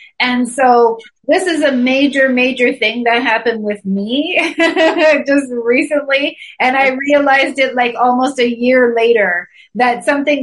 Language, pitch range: English, 215-270 Hz